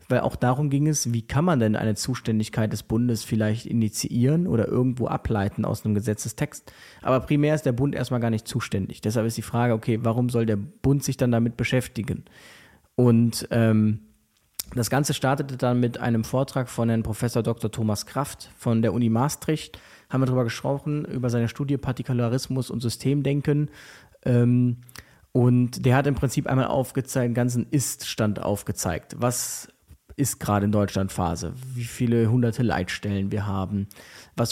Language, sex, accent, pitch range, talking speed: German, male, German, 110-135 Hz, 170 wpm